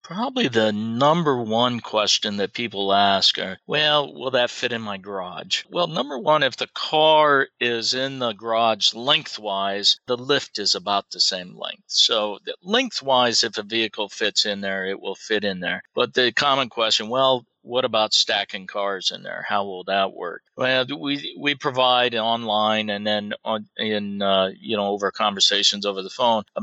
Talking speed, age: 180 wpm, 50-69